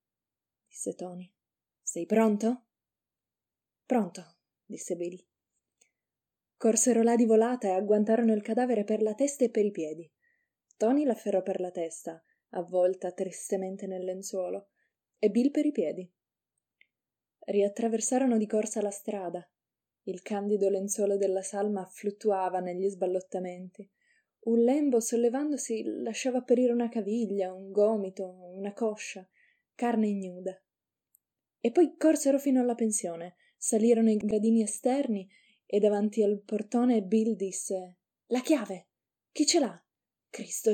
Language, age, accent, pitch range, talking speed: Italian, 20-39, native, 185-230 Hz, 125 wpm